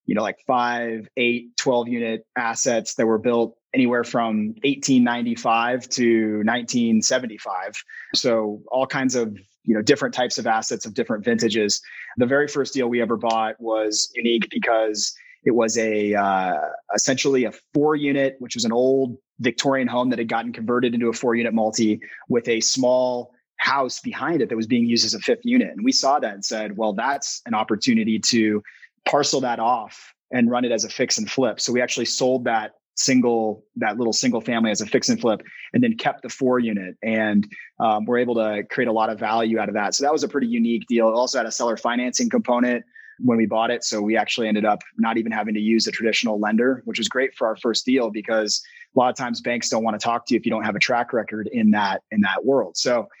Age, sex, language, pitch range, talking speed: 20-39, male, English, 110-125 Hz, 220 wpm